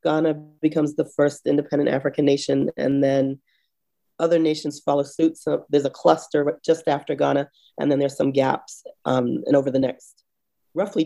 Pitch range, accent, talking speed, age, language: 140-160 Hz, American, 170 wpm, 30-49, English